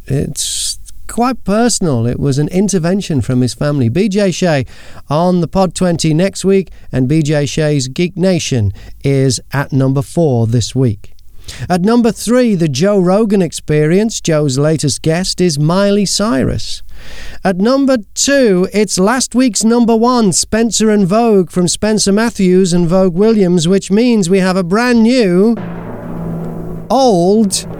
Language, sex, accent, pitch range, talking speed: English, male, British, 145-205 Hz, 145 wpm